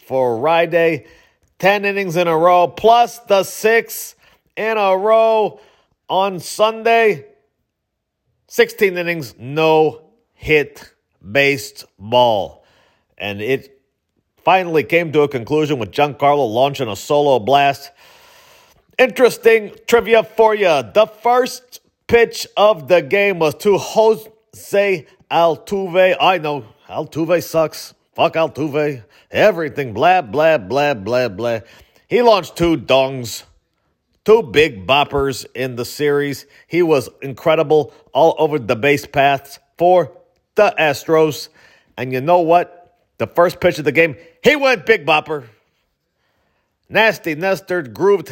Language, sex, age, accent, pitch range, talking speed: English, male, 40-59, American, 140-195 Hz, 120 wpm